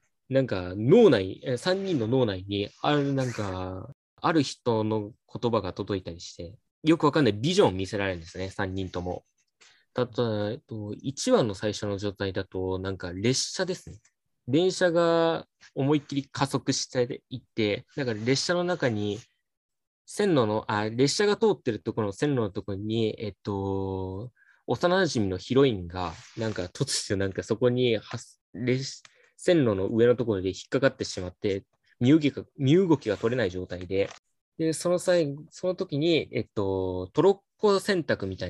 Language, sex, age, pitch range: Japanese, male, 20-39, 100-145 Hz